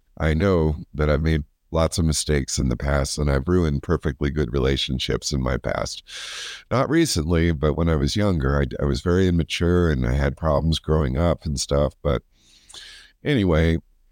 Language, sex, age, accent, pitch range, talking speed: English, male, 50-69, American, 70-85 Hz, 180 wpm